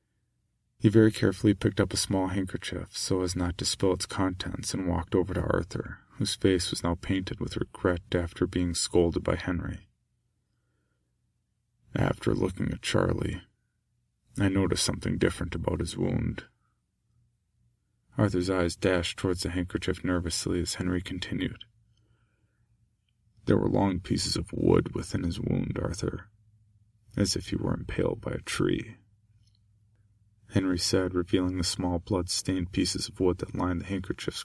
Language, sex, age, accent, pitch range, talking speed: English, male, 40-59, American, 90-110 Hz, 145 wpm